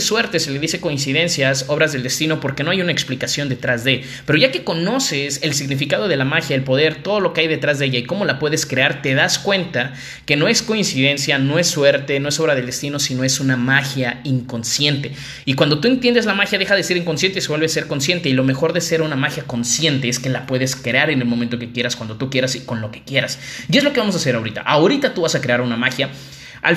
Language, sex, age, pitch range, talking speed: Spanish, male, 20-39, 130-165 Hz, 260 wpm